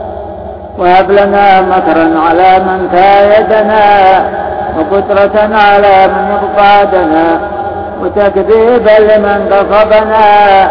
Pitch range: 165-205 Hz